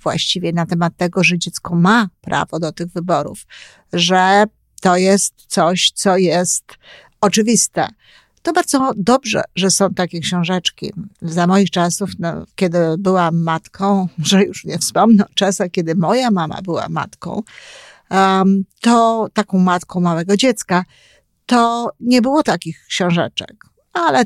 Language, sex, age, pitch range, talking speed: Polish, female, 50-69, 175-210 Hz, 135 wpm